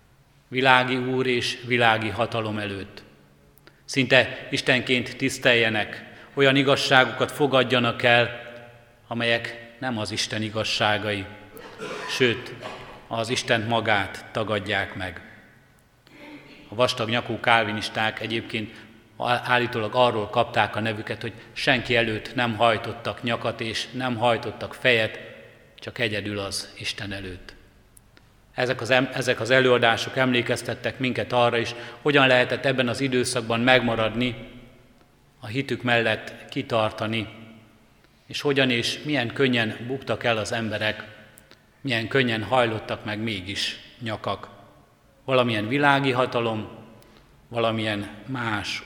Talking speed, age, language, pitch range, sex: 110 wpm, 30-49, Hungarian, 110-125 Hz, male